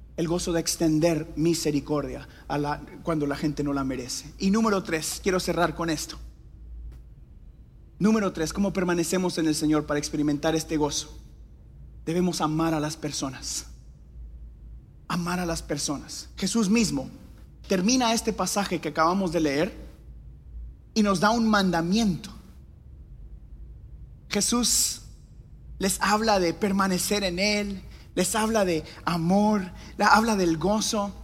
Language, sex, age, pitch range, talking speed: Spanish, male, 30-49, 145-200 Hz, 130 wpm